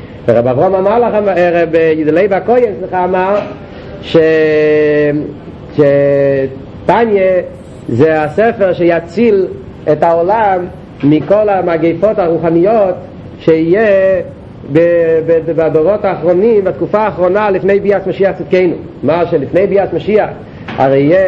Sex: male